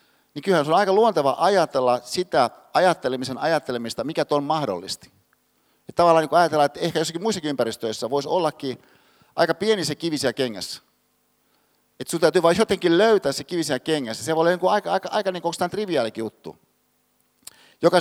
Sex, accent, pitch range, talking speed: male, native, 130-180 Hz, 160 wpm